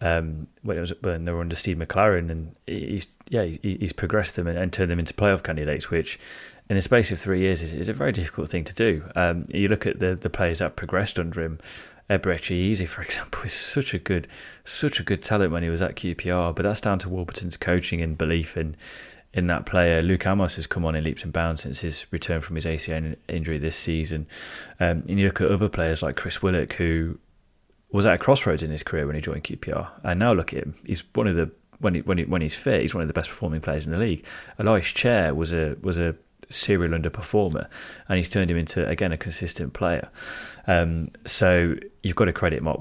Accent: British